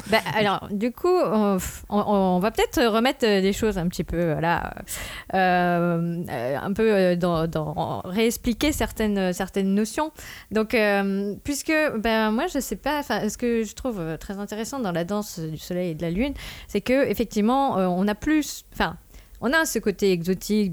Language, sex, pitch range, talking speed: French, female, 180-225 Hz, 175 wpm